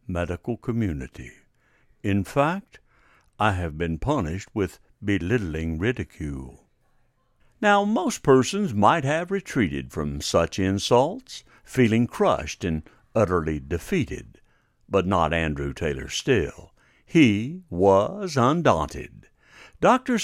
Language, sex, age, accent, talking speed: English, male, 60-79, American, 100 wpm